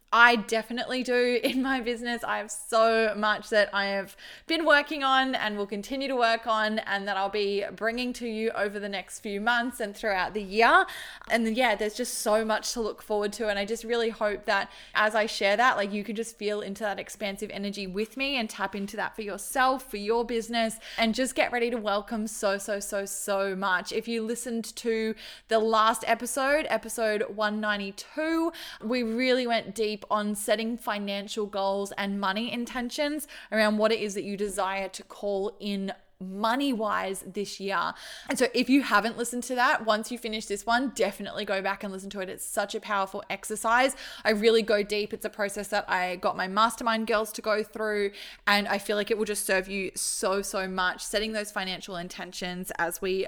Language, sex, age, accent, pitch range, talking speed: English, female, 20-39, Australian, 200-230 Hz, 205 wpm